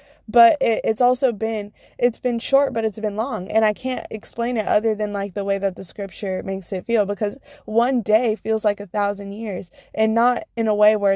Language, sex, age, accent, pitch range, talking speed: English, female, 20-39, American, 200-255 Hz, 220 wpm